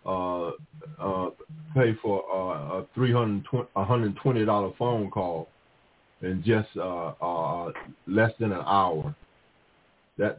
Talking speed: 140 wpm